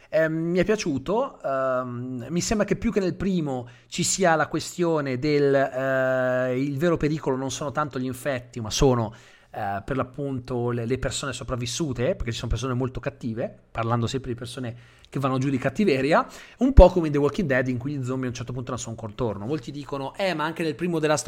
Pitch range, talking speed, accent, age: 125-170 Hz, 205 wpm, native, 30-49